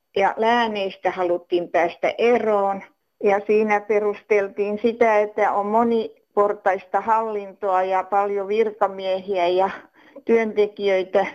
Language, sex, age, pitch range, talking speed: Finnish, female, 50-69, 185-215 Hz, 90 wpm